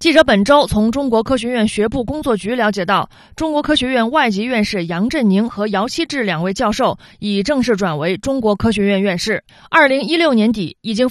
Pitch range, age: 205-260 Hz, 30-49